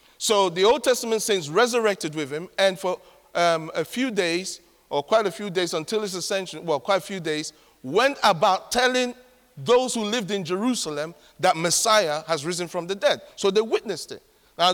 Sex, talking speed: male, 190 wpm